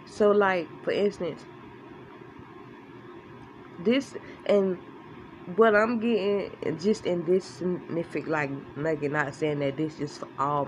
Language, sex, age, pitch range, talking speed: English, female, 20-39, 150-205 Hz, 110 wpm